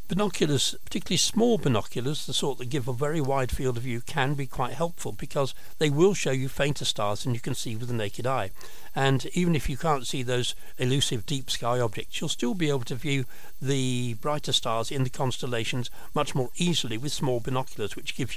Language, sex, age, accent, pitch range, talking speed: English, male, 60-79, British, 120-145 Hz, 210 wpm